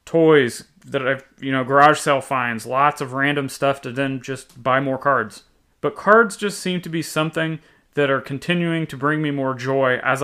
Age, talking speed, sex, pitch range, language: 30-49, 200 wpm, male, 130-160 Hz, English